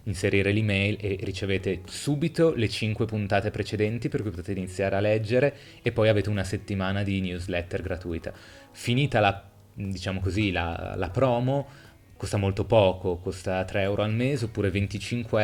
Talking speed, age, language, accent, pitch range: 155 wpm, 20-39, Italian, native, 95-110 Hz